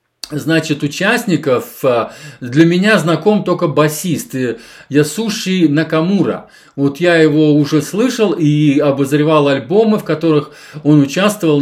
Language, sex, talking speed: Russian, male, 110 wpm